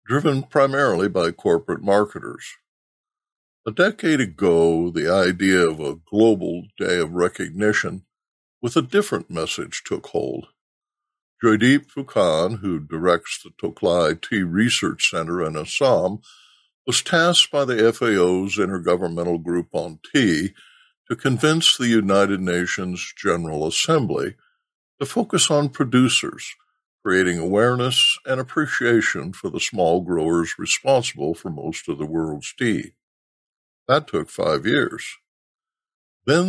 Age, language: 60-79, English